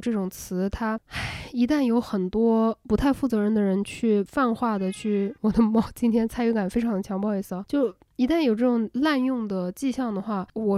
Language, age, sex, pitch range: Chinese, 10-29, female, 200-240 Hz